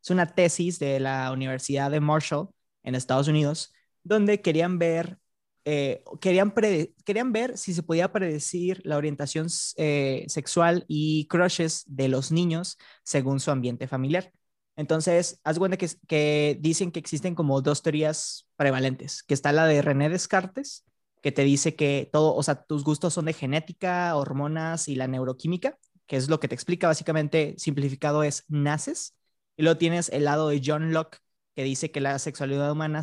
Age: 20-39